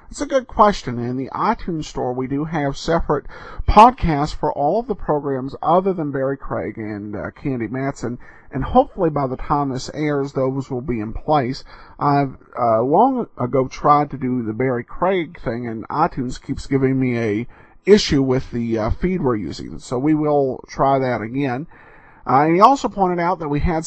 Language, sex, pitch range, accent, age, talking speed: English, male, 125-175 Hz, American, 50-69, 195 wpm